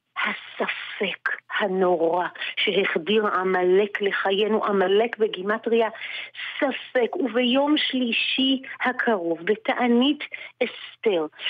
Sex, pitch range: female, 210-290 Hz